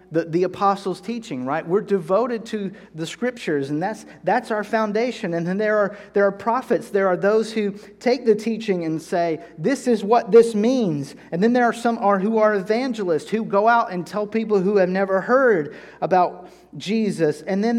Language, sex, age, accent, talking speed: English, male, 40-59, American, 195 wpm